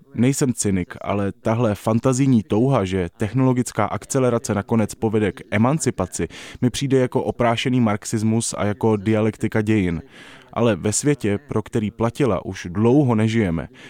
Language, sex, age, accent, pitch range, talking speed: Czech, male, 20-39, native, 100-130 Hz, 135 wpm